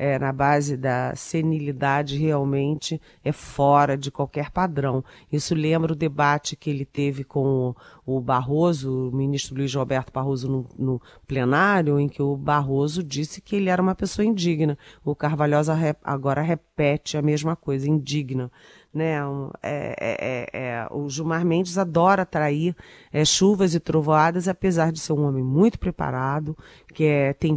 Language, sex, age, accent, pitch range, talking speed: Portuguese, female, 40-59, Brazilian, 140-175 Hz, 140 wpm